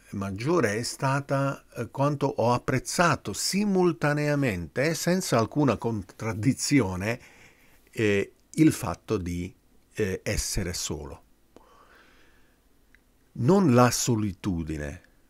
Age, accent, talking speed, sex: 50-69, native, 80 wpm, male